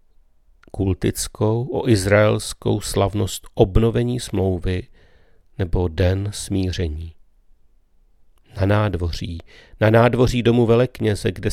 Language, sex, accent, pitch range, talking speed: Czech, male, native, 90-115 Hz, 80 wpm